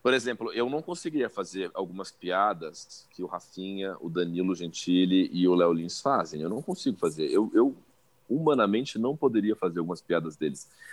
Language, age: Portuguese, 40-59